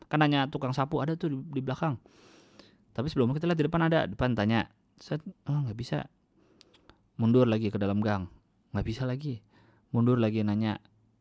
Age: 20-39